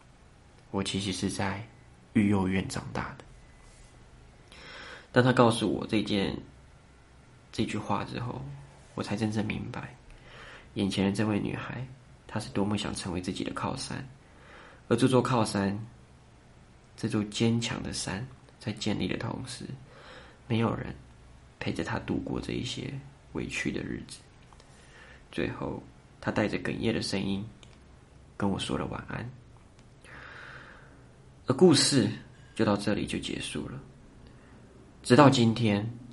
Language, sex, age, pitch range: Chinese, male, 20-39, 95-125 Hz